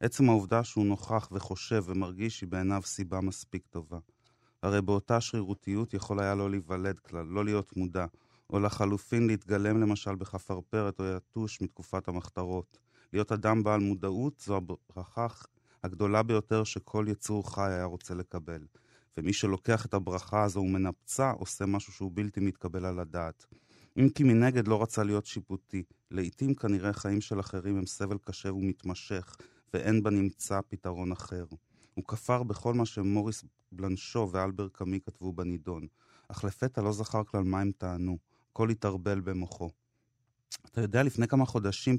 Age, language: 30-49, Hebrew